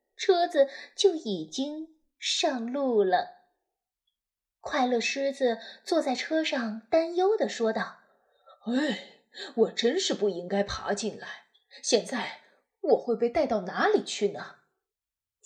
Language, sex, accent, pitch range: Chinese, female, native, 225-345 Hz